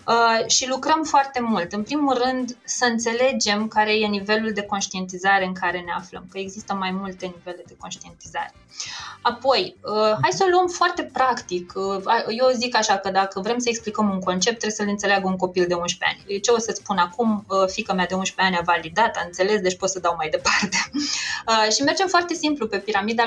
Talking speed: 195 wpm